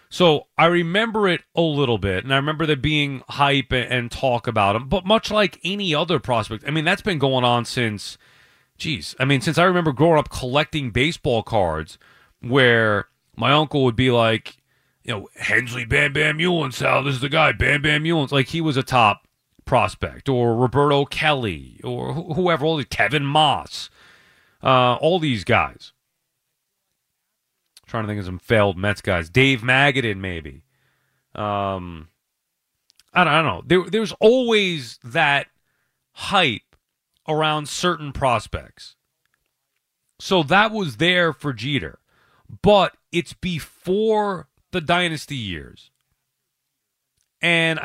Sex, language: male, English